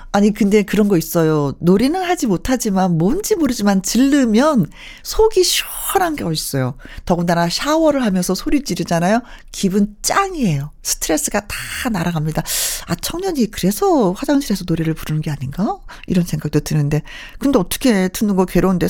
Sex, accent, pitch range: female, native, 170-255 Hz